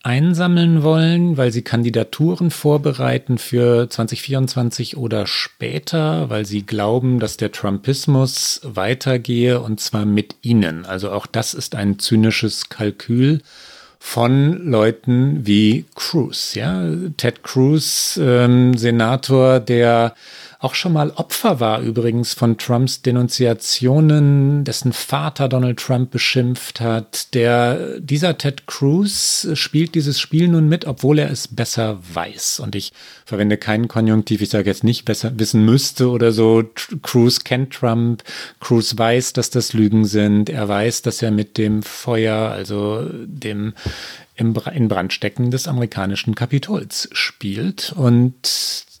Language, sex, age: German, male, 40-59